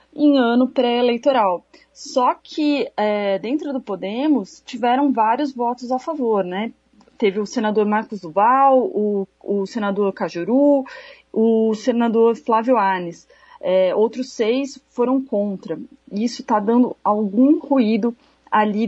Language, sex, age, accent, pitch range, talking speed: Portuguese, female, 30-49, Brazilian, 205-255 Hz, 125 wpm